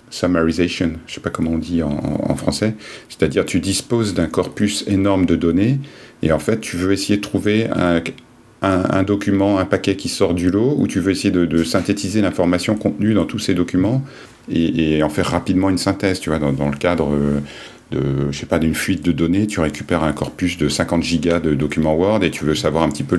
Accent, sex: French, male